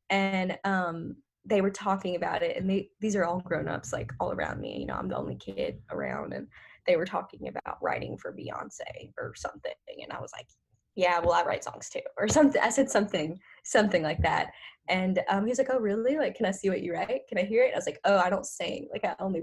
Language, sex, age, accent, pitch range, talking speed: English, female, 10-29, American, 185-245 Hz, 245 wpm